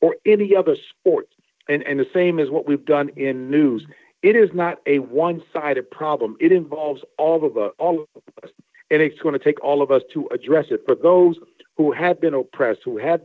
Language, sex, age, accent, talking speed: English, male, 50-69, American, 215 wpm